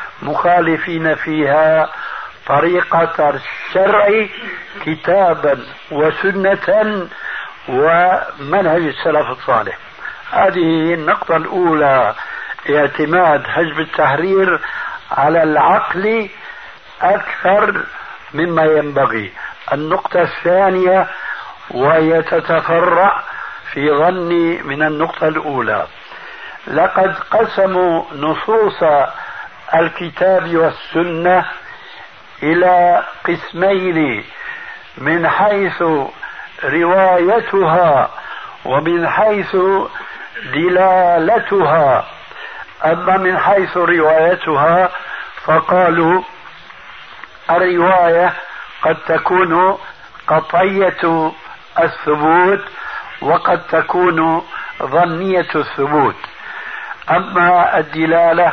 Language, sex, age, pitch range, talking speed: Arabic, male, 60-79, 160-190 Hz, 60 wpm